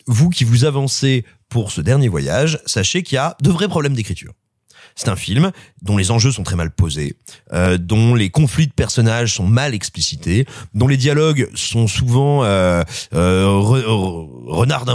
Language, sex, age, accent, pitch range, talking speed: French, male, 30-49, French, 105-150 Hz, 175 wpm